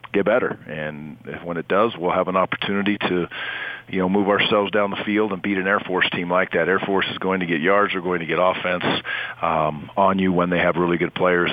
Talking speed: 245 wpm